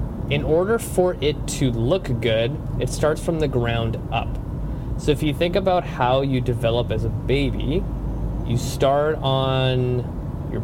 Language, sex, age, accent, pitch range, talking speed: English, male, 30-49, American, 120-150 Hz, 160 wpm